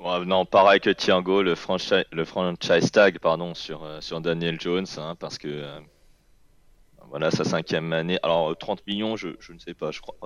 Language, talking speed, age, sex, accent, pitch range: French, 180 wpm, 20-39, male, French, 80-100 Hz